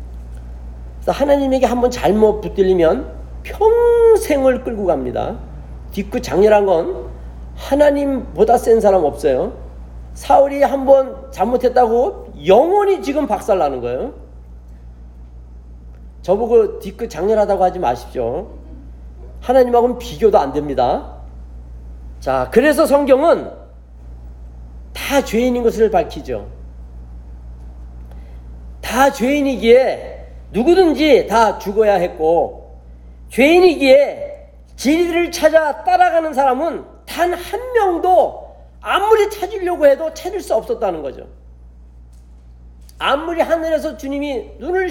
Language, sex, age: Korean, male, 40-59